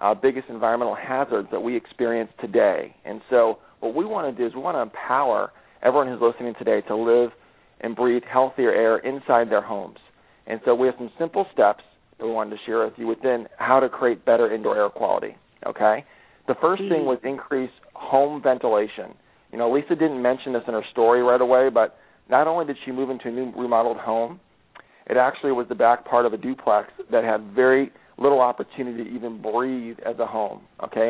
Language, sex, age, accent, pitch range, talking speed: English, male, 40-59, American, 115-130 Hz, 205 wpm